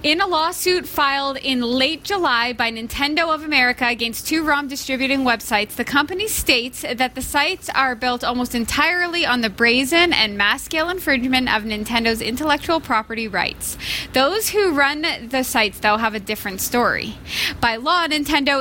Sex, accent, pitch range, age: female, American, 235-300 Hz, 20-39